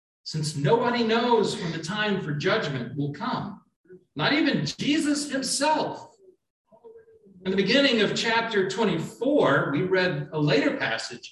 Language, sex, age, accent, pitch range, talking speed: English, male, 40-59, American, 160-230 Hz, 135 wpm